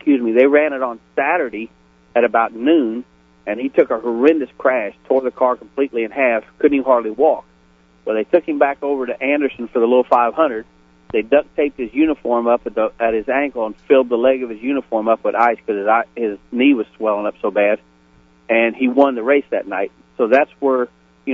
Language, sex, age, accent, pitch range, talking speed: English, male, 40-59, American, 105-130 Hz, 220 wpm